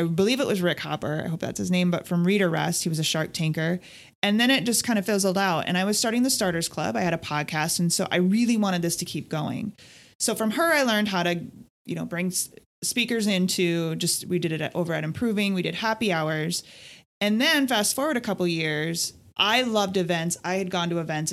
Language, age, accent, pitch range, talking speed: English, 30-49, American, 165-200 Hz, 245 wpm